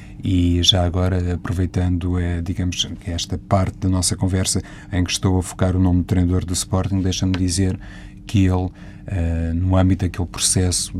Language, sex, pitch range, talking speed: Portuguese, male, 90-100 Hz, 165 wpm